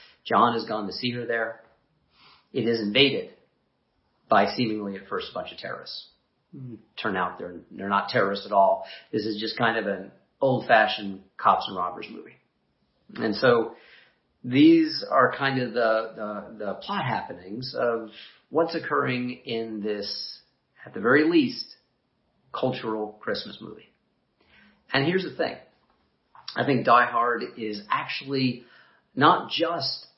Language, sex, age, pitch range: English, male, 40-59, 105-130 Hz